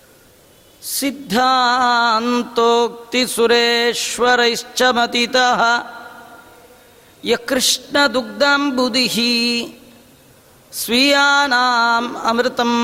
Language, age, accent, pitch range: Kannada, 40-59, native, 230-245 Hz